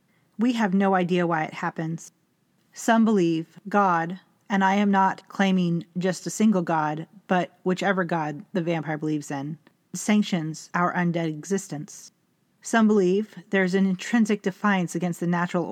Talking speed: 155 wpm